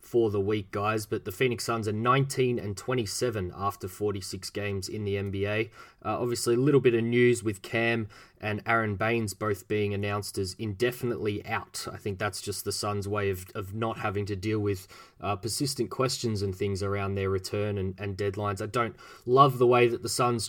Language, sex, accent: English, male, Australian